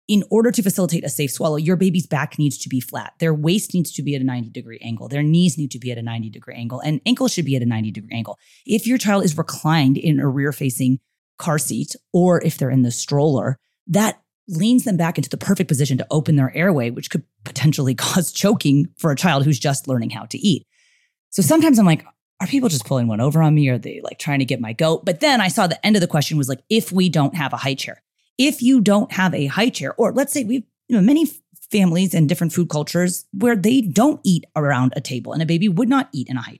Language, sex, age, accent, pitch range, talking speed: English, female, 30-49, American, 135-190 Hz, 255 wpm